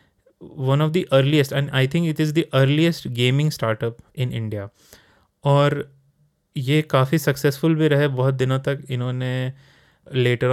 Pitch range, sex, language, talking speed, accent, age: 120-135 Hz, male, Hindi, 150 wpm, native, 20-39